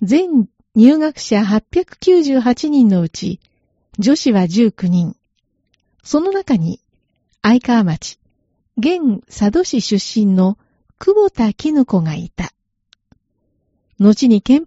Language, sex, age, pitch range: Japanese, female, 40-59, 185-275 Hz